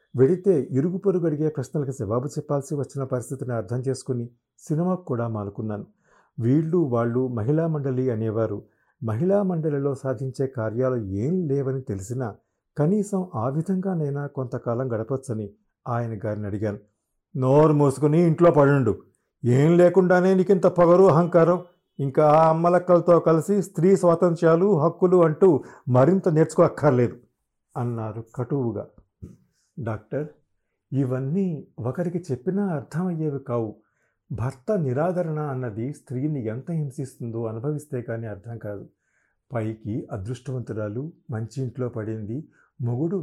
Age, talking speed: 50-69, 105 wpm